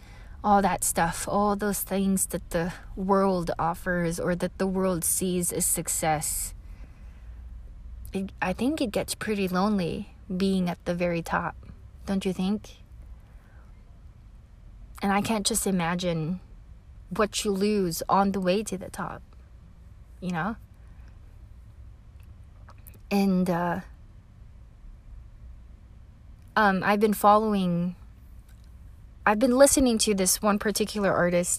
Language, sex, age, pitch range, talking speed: English, female, 20-39, 150-205 Hz, 120 wpm